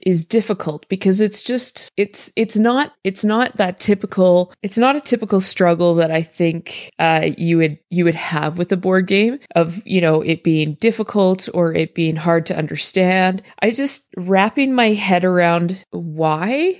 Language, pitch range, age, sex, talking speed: English, 160-210 Hz, 20-39, female, 175 wpm